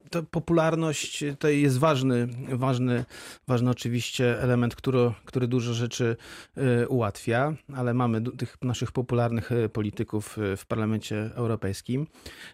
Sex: male